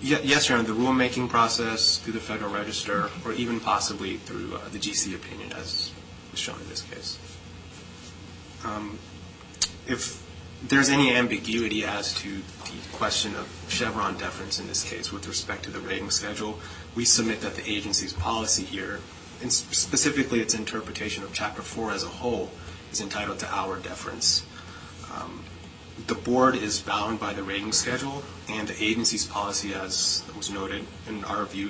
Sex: male